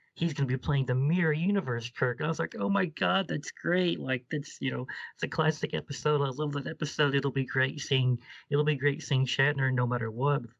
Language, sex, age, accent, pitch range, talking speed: English, male, 30-49, American, 120-145 Hz, 230 wpm